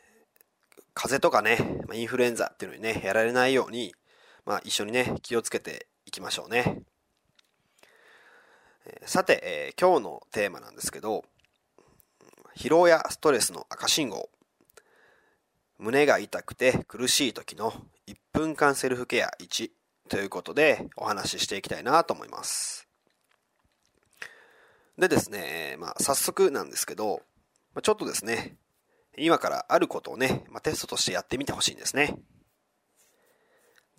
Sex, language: male, Japanese